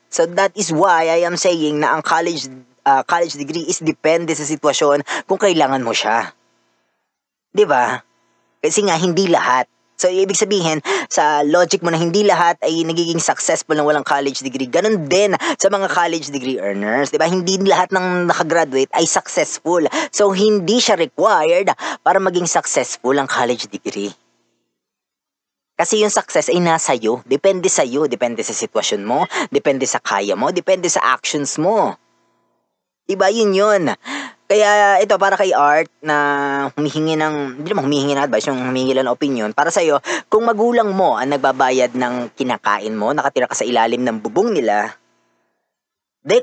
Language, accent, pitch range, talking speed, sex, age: Filipino, native, 140-195 Hz, 160 wpm, female, 20-39